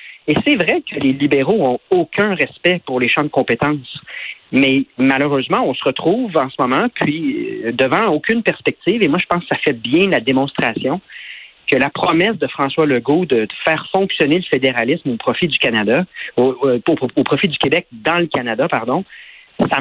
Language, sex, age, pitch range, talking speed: French, male, 40-59, 140-185 Hz, 190 wpm